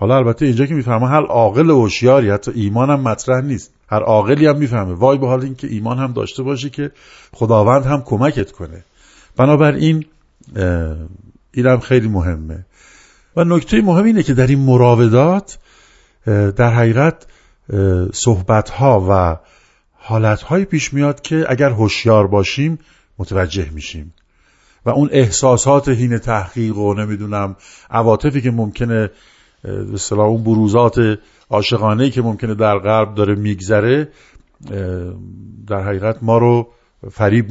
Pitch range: 100-130 Hz